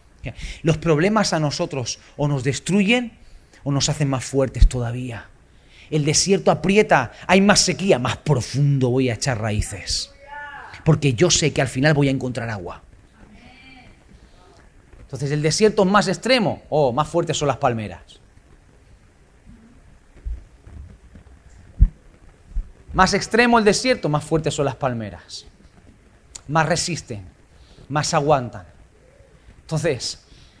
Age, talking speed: 40-59, 120 wpm